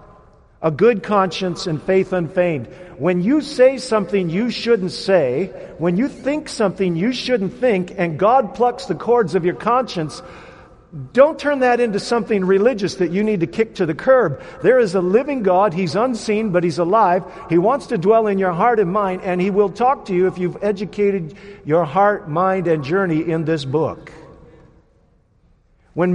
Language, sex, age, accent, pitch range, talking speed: English, male, 50-69, American, 175-230 Hz, 180 wpm